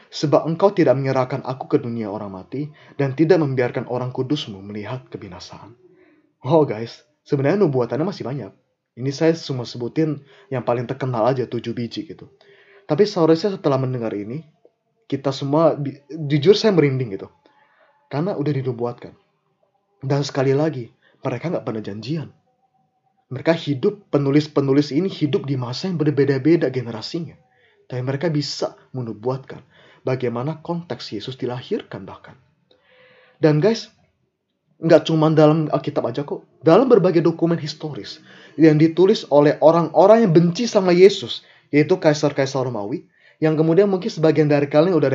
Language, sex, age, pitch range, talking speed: Indonesian, male, 20-39, 130-165 Hz, 140 wpm